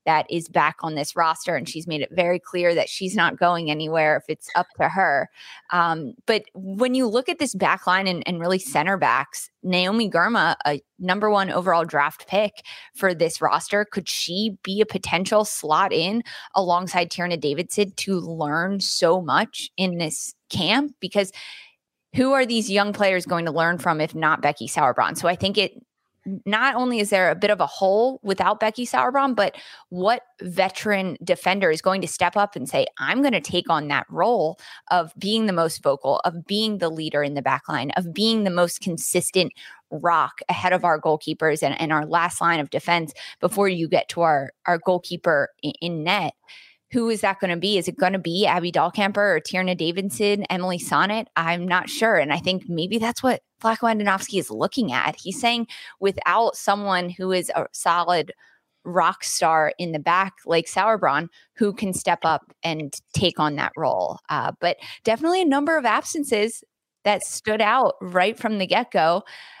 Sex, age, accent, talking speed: female, 20-39, American, 190 wpm